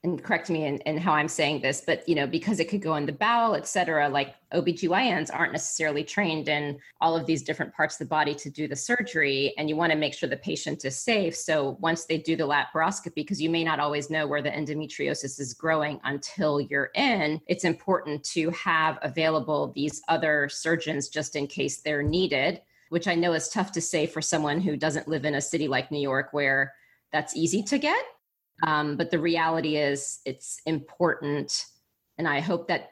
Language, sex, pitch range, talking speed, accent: English, female, 150-175 Hz, 210 wpm, American